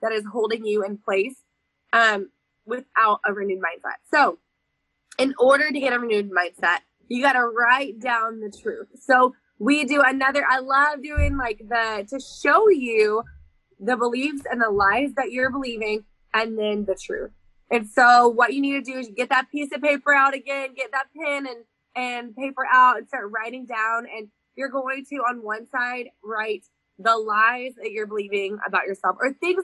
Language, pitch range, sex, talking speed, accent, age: English, 210-265 Hz, female, 190 wpm, American, 20-39